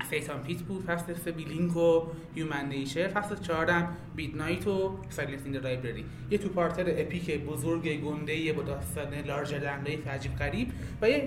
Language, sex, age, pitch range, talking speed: Persian, male, 30-49, 145-175 Hz, 160 wpm